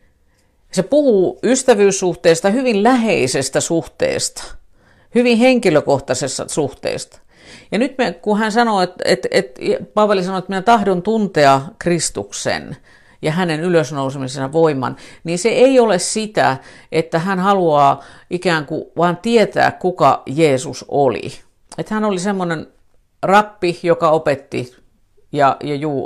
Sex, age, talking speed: female, 50-69, 120 wpm